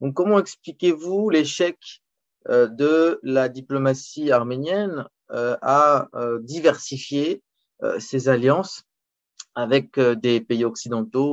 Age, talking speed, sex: 30-49, 85 wpm, male